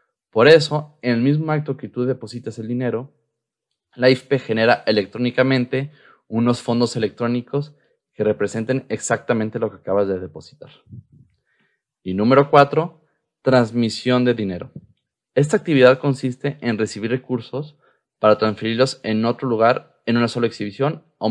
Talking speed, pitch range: 135 wpm, 110-140 Hz